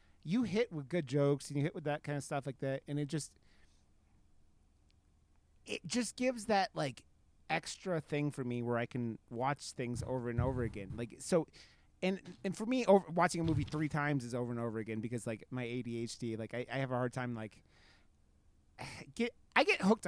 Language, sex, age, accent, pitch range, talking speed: English, male, 30-49, American, 115-145 Hz, 205 wpm